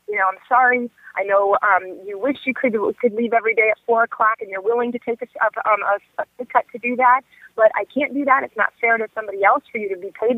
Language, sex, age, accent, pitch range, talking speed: English, female, 30-49, American, 205-255 Hz, 270 wpm